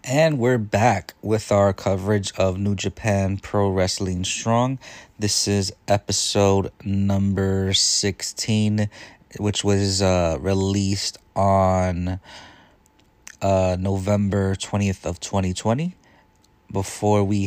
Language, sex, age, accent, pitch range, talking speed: English, male, 30-49, American, 95-105 Hz, 100 wpm